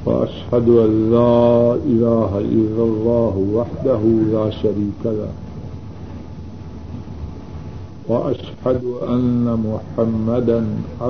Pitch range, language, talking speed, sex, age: 95-120 Hz, Urdu, 70 wpm, male, 50-69